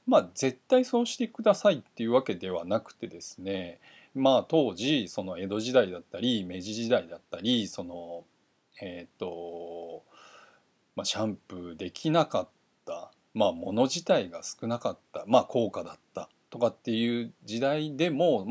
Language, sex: Japanese, male